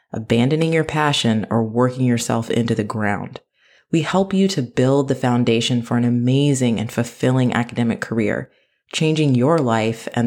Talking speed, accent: 160 wpm, American